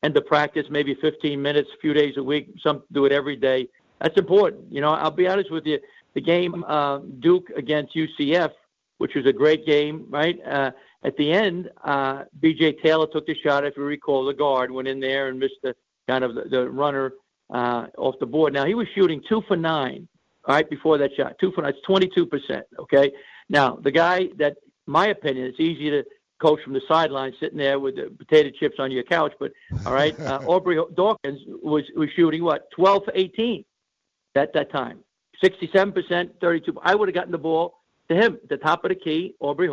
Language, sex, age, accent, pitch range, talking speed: English, male, 60-79, American, 140-175 Hz, 210 wpm